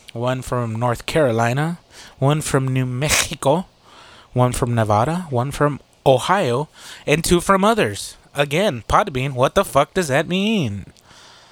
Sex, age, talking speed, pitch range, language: male, 20-39, 135 wpm, 110-150 Hz, English